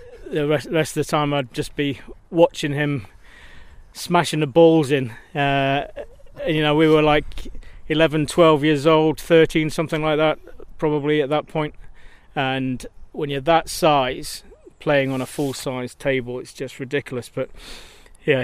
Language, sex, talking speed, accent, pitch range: English, male, 155 wpm, British, 135-155 Hz